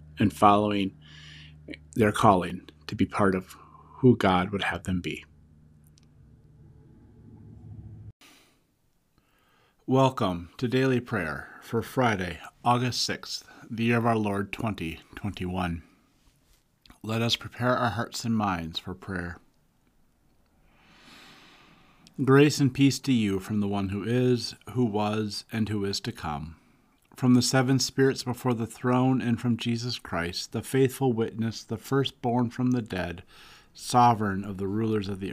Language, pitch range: English, 95-125 Hz